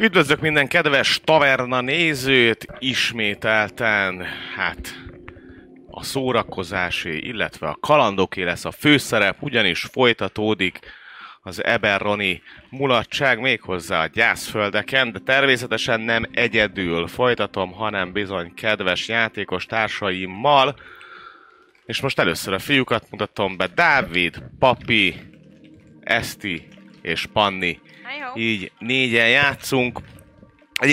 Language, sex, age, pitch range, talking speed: Hungarian, male, 30-49, 95-125 Hz, 95 wpm